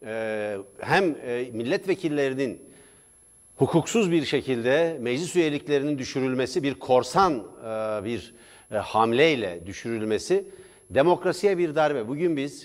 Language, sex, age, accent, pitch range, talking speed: Turkish, male, 60-79, native, 135-190 Hz, 85 wpm